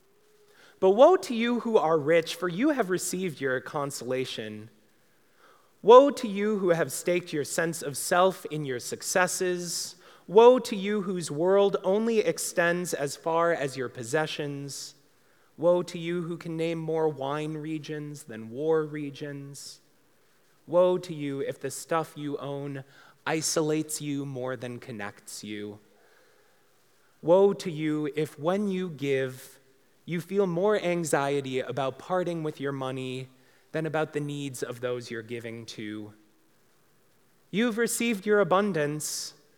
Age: 30-49